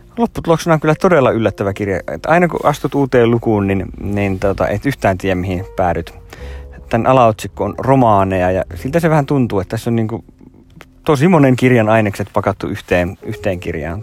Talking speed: 180 wpm